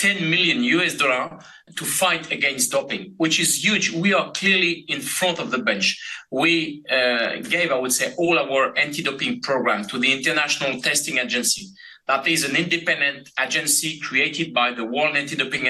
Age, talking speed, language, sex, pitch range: 30-49, 170 wpm, English, male, 145-185 Hz